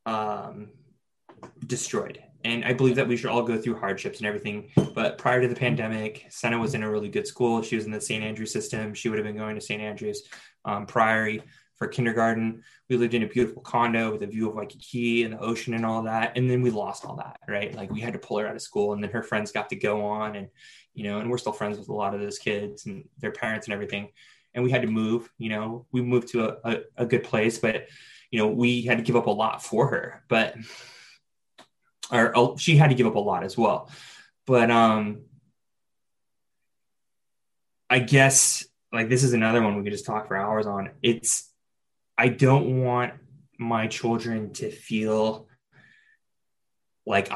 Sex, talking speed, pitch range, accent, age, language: male, 215 wpm, 110-125 Hz, American, 20-39, English